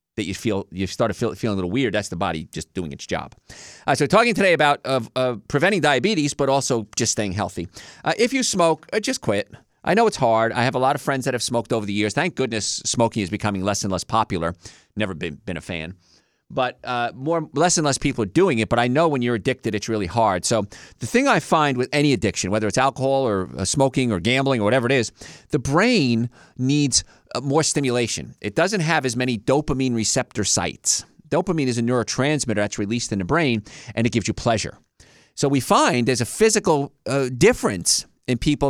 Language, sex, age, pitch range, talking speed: English, male, 40-59, 110-140 Hz, 225 wpm